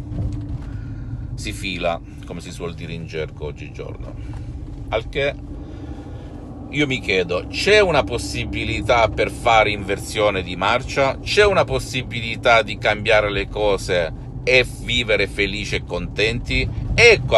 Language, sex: Italian, male